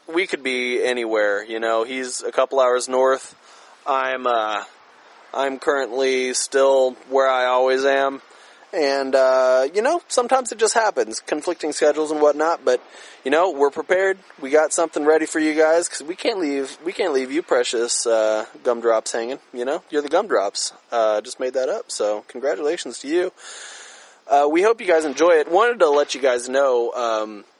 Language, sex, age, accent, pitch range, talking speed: English, male, 20-39, American, 115-155 Hz, 185 wpm